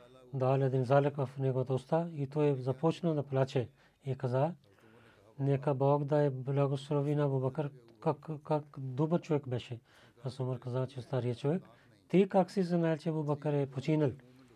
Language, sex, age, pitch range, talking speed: Bulgarian, male, 40-59, 125-150 Hz, 160 wpm